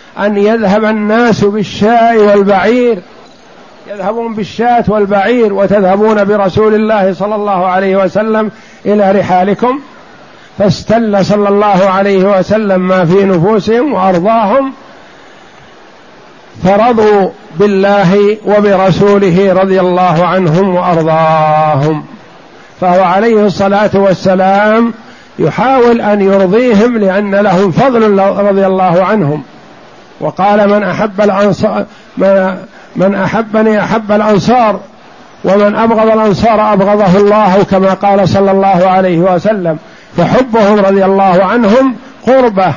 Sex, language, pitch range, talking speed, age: male, Arabic, 190-215 Hz, 95 wpm, 50-69